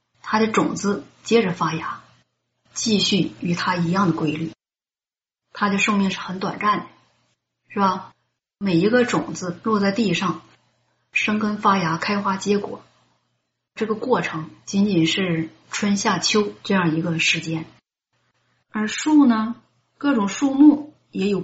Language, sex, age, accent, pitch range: Chinese, female, 30-49, native, 175-210 Hz